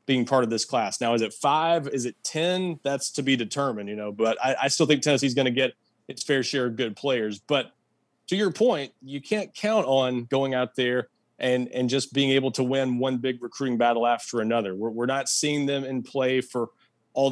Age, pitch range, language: 30-49, 120-140 Hz, English